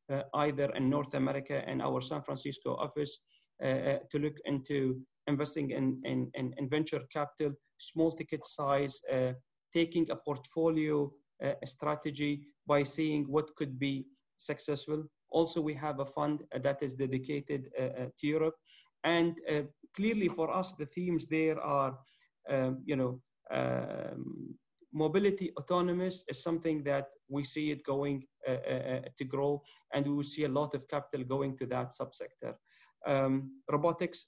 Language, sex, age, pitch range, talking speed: English, male, 30-49, 135-160 Hz, 150 wpm